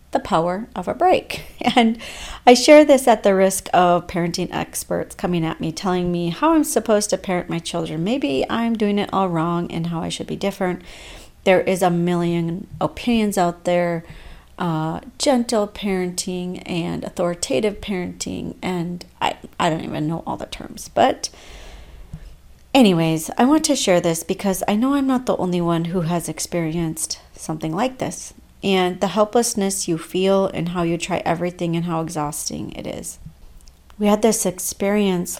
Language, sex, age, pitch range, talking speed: English, female, 40-59, 165-205 Hz, 170 wpm